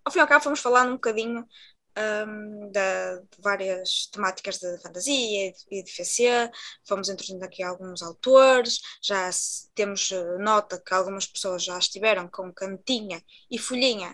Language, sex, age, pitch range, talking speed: Portuguese, female, 20-39, 195-235 Hz, 155 wpm